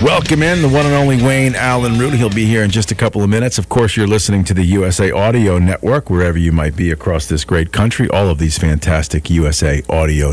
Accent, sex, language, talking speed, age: American, male, English, 240 wpm, 50-69